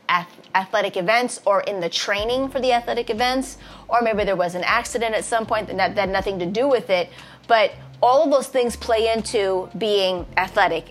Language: English